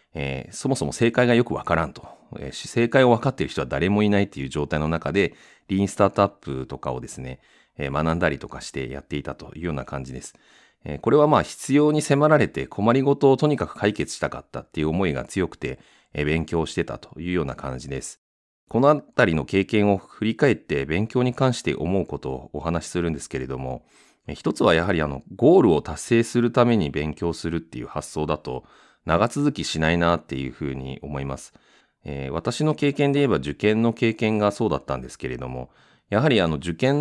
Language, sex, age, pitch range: Japanese, male, 30-49, 70-115 Hz